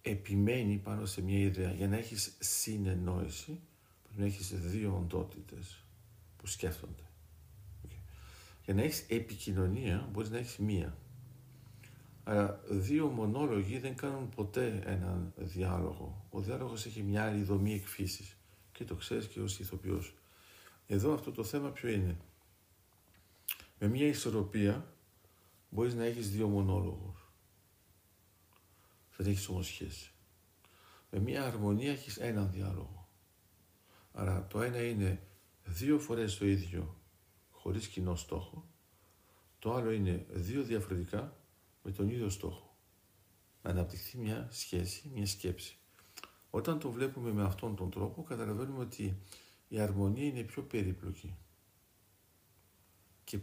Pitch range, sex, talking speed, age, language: 95-110 Hz, male, 125 wpm, 50-69, Greek